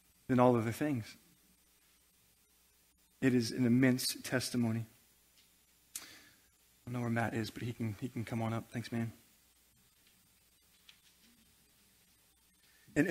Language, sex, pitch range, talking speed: English, male, 120-155 Hz, 120 wpm